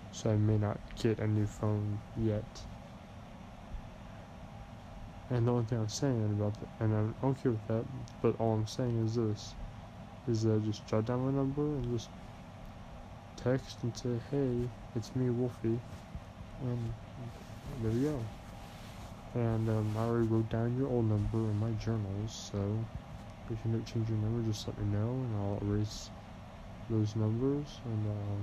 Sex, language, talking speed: male, English, 165 wpm